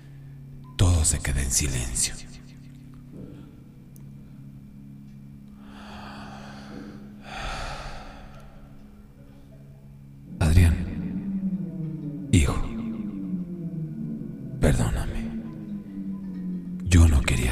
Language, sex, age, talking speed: Spanish, male, 50-69, 35 wpm